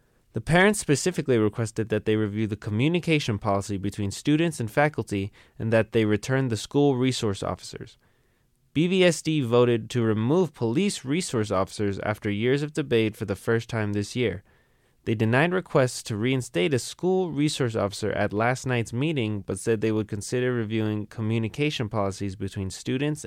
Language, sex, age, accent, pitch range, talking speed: English, male, 20-39, American, 110-140 Hz, 160 wpm